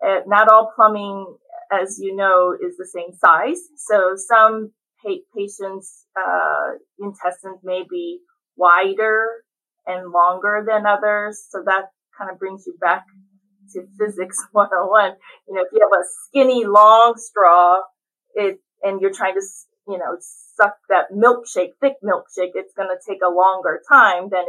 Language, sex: English, female